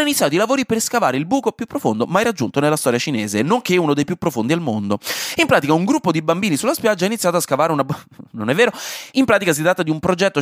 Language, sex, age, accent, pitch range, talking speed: Italian, male, 20-39, native, 145-220 Hz, 260 wpm